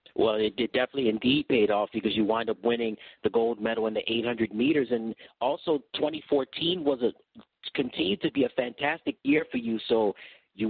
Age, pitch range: 40-59, 115-140 Hz